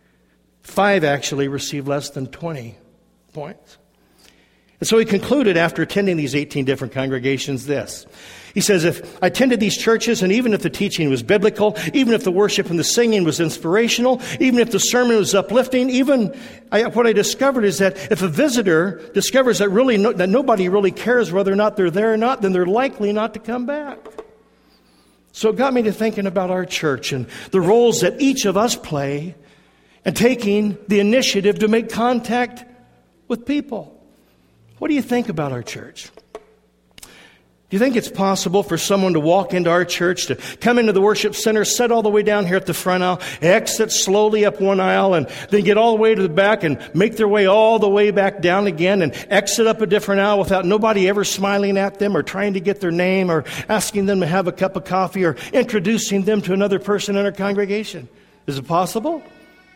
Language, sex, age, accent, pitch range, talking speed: English, male, 60-79, American, 175-220 Hz, 205 wpm